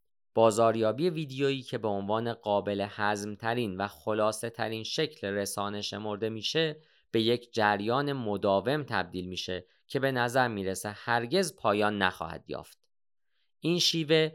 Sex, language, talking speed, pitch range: male, Persian, 125 wpm, 100-135 Hz